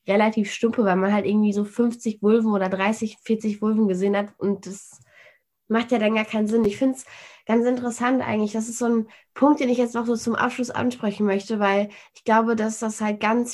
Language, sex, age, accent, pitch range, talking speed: German, female, 20-39, German, 210-245 Hz, 220 wpm